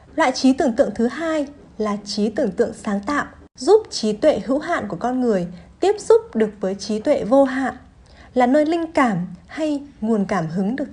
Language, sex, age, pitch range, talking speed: Vietnamese, female, 10-29, 215-290 Hz, 205 wpm